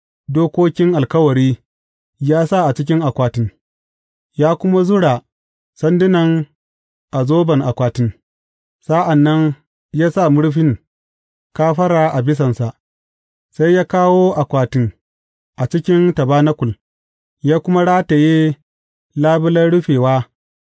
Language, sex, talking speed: English, male, 80 wpm